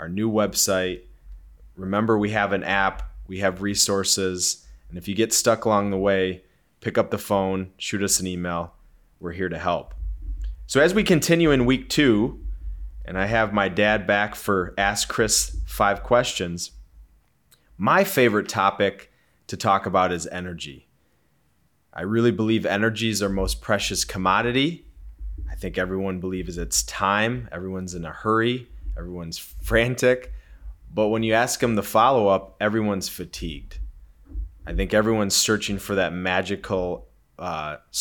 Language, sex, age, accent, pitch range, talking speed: English, male, 30-49, American, 85-110 Hz, 150 wpm